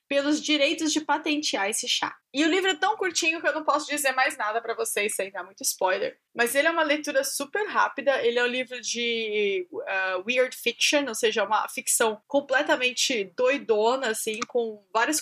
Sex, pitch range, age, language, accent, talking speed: female, 215-285 Hz, 20-39, Portuguese, Brazilian, 195 wpm